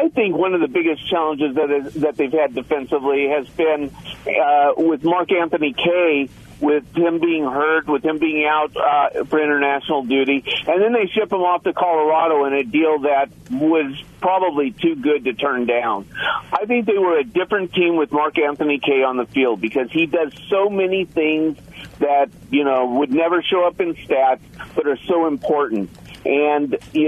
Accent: American